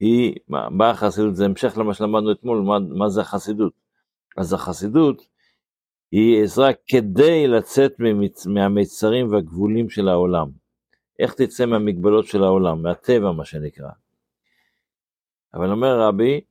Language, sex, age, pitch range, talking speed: Hebrew, male, 60-79, 100-125 Hz, 125 wpm